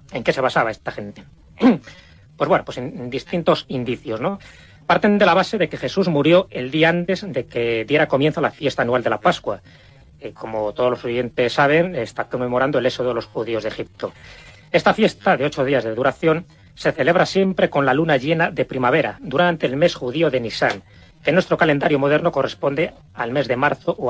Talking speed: 205 wpm